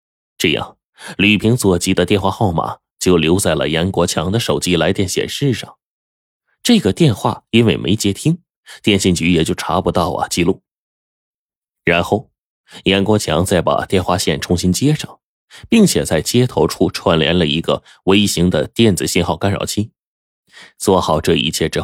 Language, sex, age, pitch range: Chinese, male, 20-39, 85-105 Hz